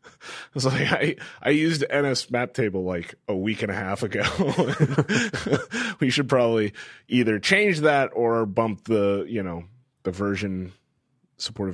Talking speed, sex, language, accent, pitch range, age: 155 wpm, male, English, American, 100-145 Hz, 30-49